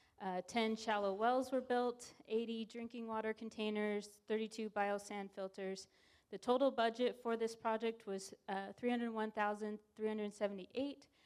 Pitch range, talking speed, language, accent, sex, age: 190-230 Hz, 110 wpm, English, American, female, 20-39